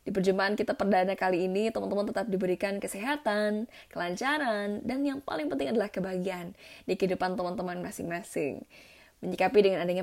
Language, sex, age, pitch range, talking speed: Indonesian, female, 20-39, 185-280 Hz, 145 wpm